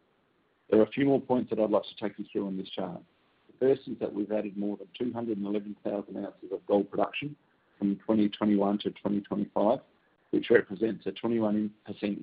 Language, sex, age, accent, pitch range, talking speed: English, male, 50-69, Australian, 100-115 Hz, 200 wpm